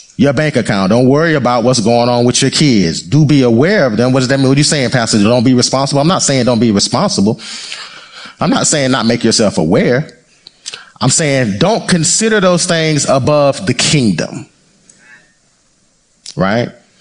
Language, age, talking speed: English, 30-49, 185 wpm